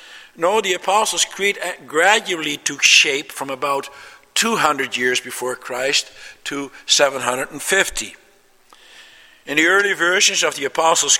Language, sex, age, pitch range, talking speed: English, male, 60-79, 130-200 Hz, 120 wpm